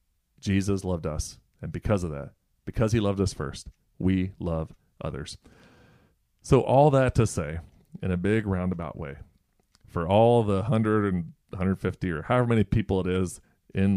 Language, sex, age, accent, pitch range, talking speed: English, male, 30-49, American, 85-100 Hz, 165 wpm